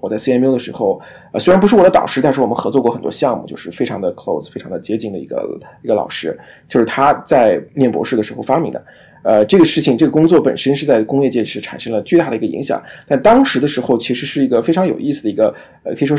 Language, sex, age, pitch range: Chinese, male, 20-39, 125-200 Hz